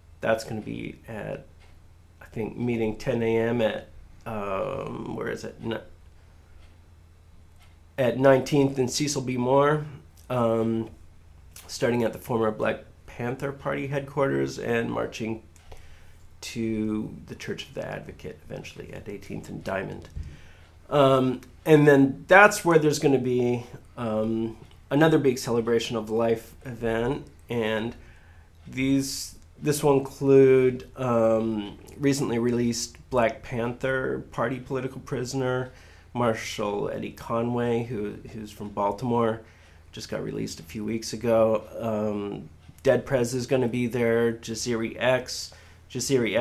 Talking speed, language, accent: 125 wpm, English, American